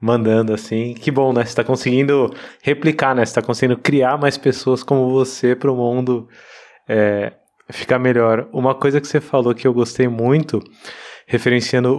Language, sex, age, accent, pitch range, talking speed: Portuguese, male, 20-39, Brazilian, 110-130 Hz, 165 wpm